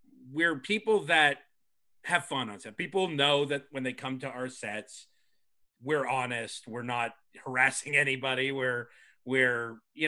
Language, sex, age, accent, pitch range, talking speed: English, male, 30-49, American, 130-175 Hz, 150 wpm